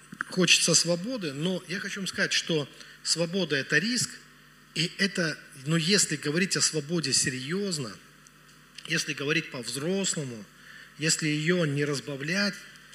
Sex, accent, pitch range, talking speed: male, native, 140-175 Hz, 120 wpm